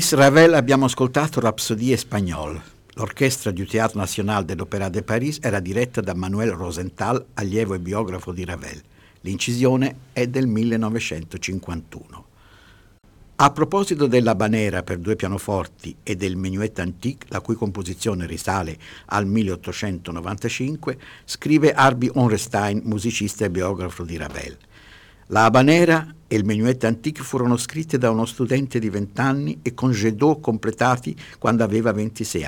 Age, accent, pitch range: 60-79, native, 95-125 Hz